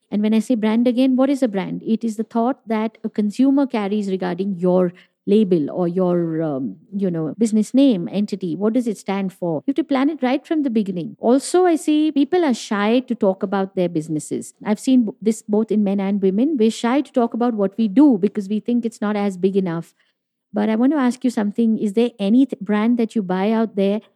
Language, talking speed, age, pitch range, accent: English, 235 wpm, 50-69, 195-245 Hz, Indian